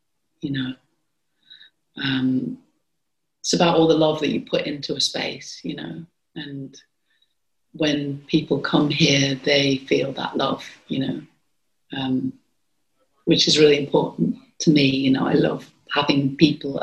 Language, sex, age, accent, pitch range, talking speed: English, female, 30-49, British, 135-155 Hz, 145 wpm